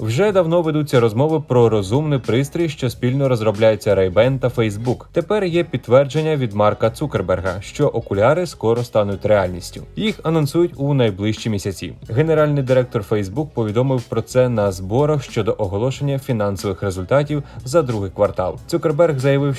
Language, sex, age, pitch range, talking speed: Ukrainian, male, 20-39, 105-150 Hz, 140 wpm